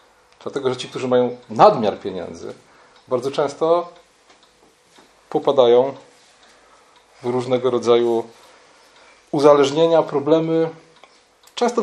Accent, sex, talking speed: native, male, 80 wpm